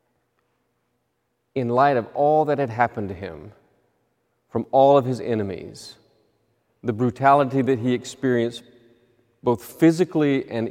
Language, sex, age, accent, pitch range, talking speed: English, male, 40-59, American, 115-140 Hz, 125 wpm